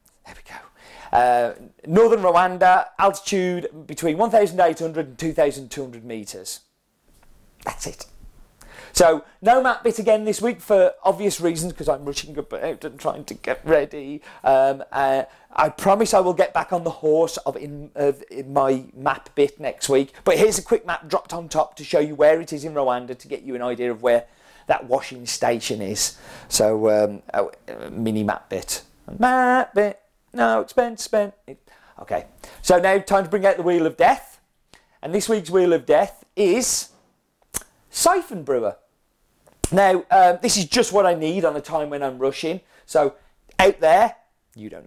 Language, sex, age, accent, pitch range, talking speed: English, male, 40-59, British, 135-195 Hz, 170 wpm